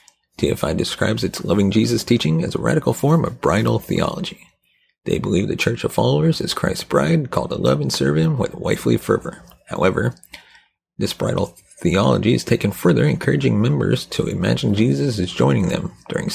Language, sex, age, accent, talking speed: English, male, 40-59, American, 175 wpm